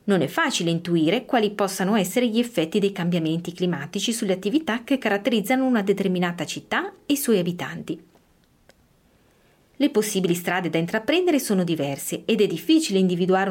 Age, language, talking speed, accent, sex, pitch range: 30-49, Italian, 150 wpm, native, female, 170-225 Hz